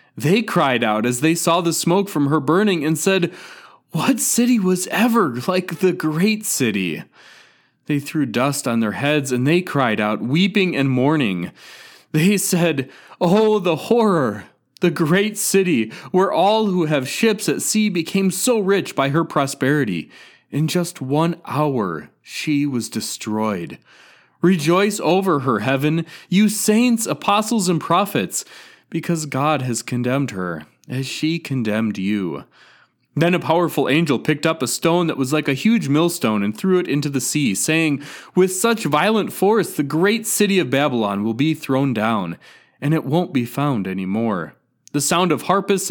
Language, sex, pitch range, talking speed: English, male, 135-185 Hz, 165 wpm